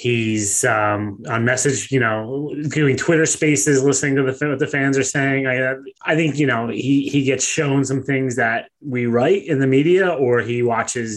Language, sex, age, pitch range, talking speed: English, male, 20-39, 115-140 Hz, 200 wpm